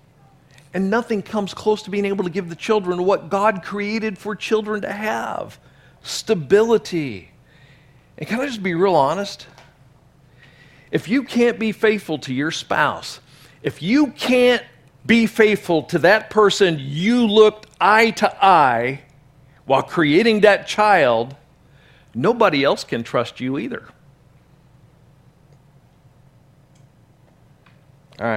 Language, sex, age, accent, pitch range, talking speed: English, male, 50-69, American, 140-200 Hz, 125 wpm